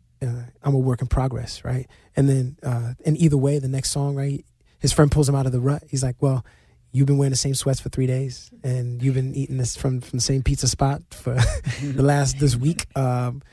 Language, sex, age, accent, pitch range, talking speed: English, male, 20-39, American, 125-145 Hz, 240 wpm